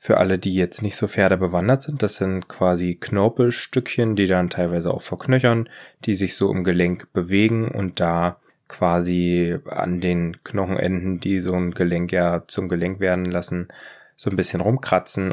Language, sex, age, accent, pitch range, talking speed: German, male, 20-39, German, 90-105 Hz, 170 wpm